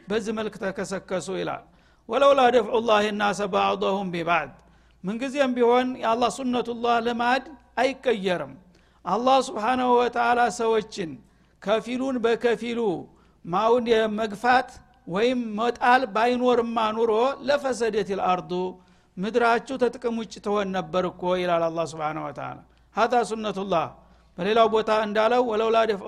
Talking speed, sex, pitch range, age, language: 115 wpm, male, 200-245 Hz, 60-79, Amharic